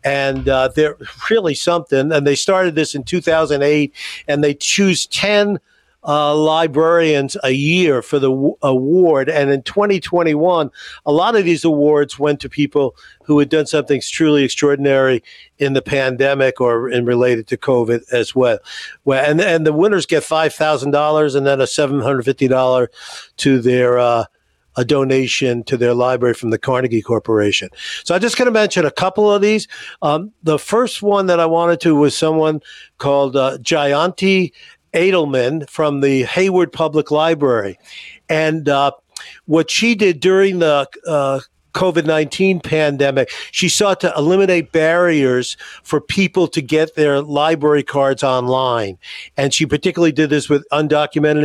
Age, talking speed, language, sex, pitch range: 50-69, 155 wpm, English, male, 140-175 Hz